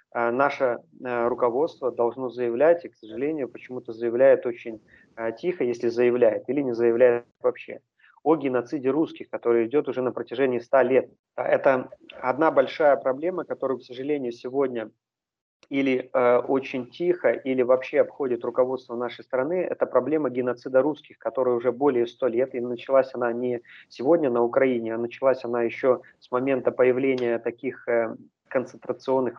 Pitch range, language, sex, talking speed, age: 120-135 Hz, Russian, male, 150 wpm, 30-49